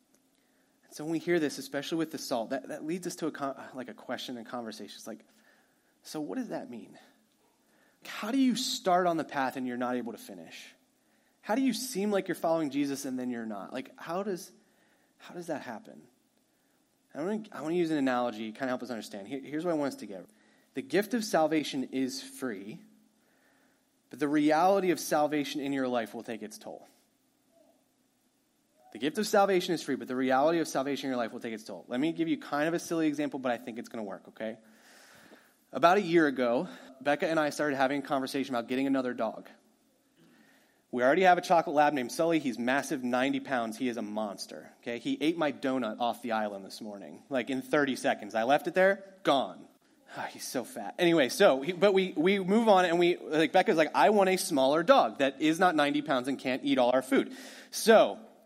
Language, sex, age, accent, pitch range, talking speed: English, male, 30-49, American, 130-205 Hz, 220 wpm